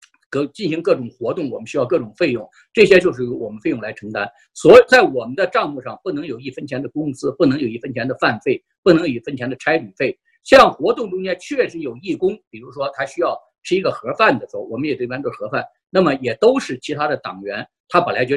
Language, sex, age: Chinese, male, 50-69